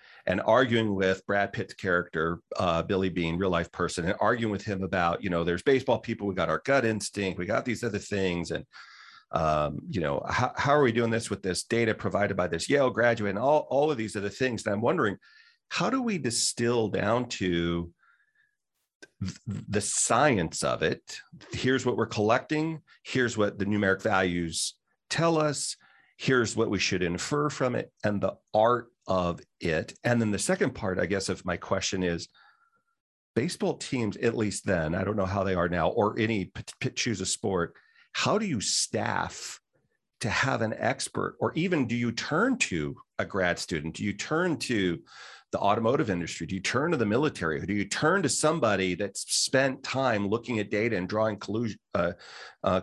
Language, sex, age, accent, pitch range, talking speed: English, male, 40-59, American, 95-125 Hz, 185 wpm